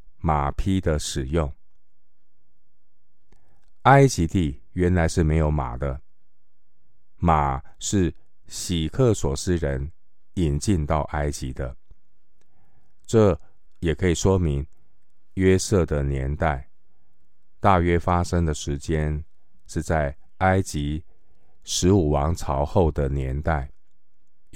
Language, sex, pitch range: Chinese, male, 75-90 Hz